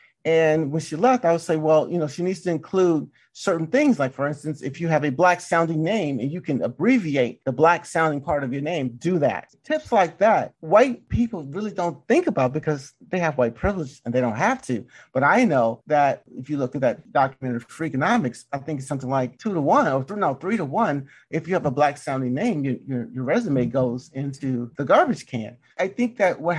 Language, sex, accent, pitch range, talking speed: English, male, American, 130-170 Hz, 230 wpm